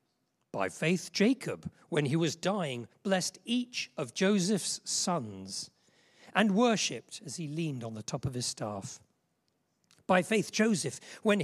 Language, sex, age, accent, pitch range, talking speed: English, male, 40-59, British, 150-215 Hz, 140 wpm